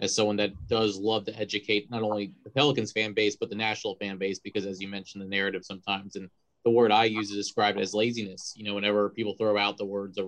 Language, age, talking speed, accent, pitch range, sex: English, 20-39, 250 wpm, American, 100-115 Hz, male